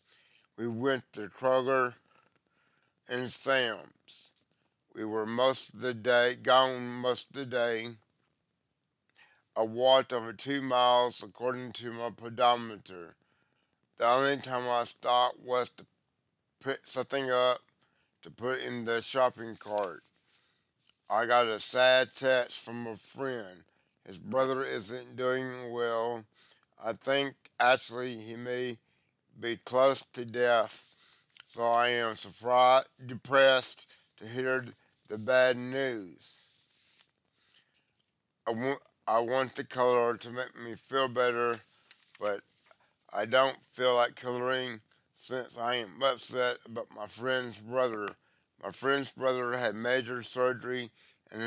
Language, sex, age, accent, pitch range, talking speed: English, male, 50-69, American, 115-130 Hz, 120 wpm